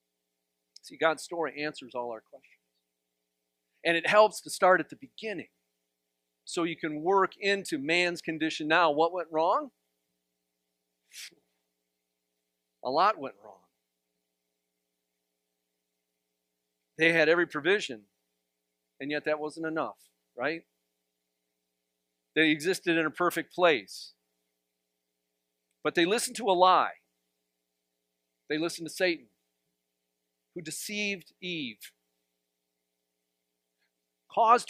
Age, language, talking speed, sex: 50-69, English, 105 wpm, male